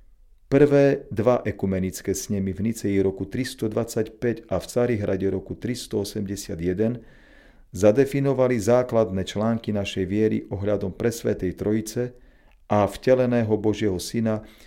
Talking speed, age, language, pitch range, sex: 105 wpm, 40-59, Slovak, 95-120 Hz, male